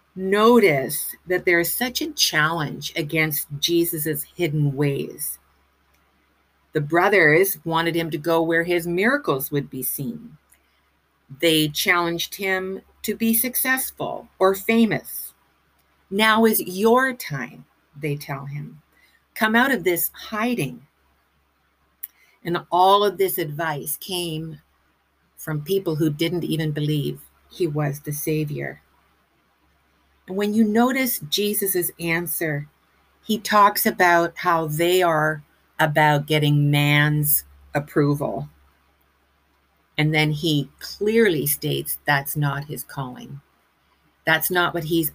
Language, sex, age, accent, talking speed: English, female, 50-69, American, 115 wpm